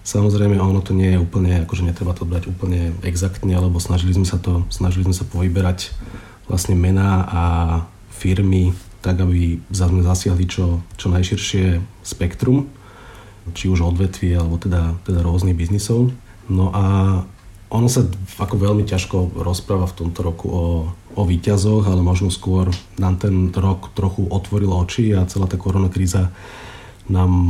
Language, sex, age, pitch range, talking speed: Slovak, male, 40-59, 90-100 Hz, 150 wpm